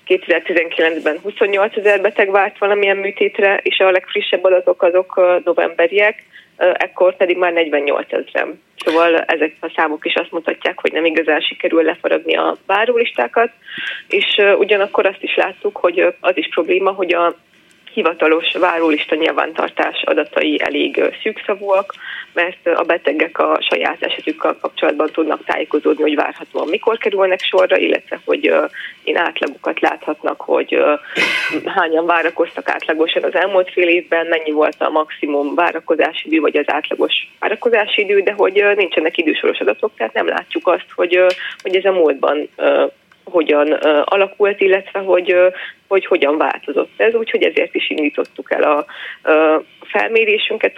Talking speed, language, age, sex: 145 wpm, Hungarian, 20-39, female